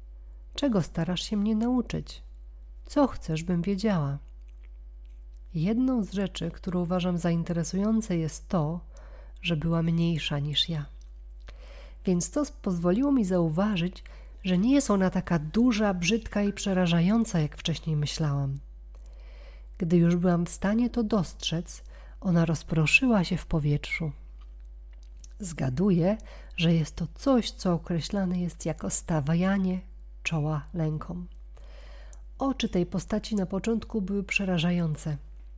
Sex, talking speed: female, 120 wpm